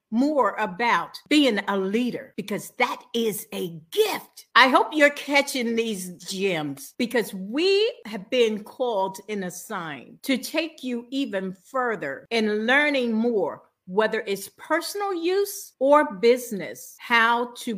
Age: 50-69